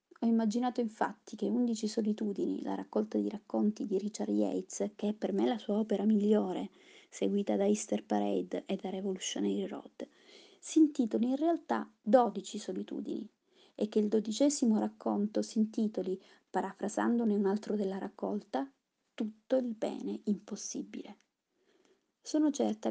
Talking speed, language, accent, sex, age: 140 wpm, Italian, native, female, 30-49